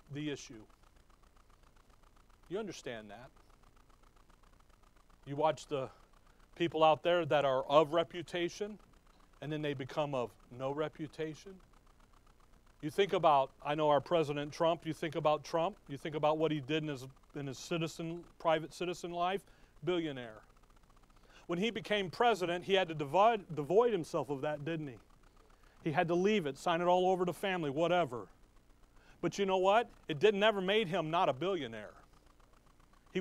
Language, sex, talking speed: English, male, 155 wpm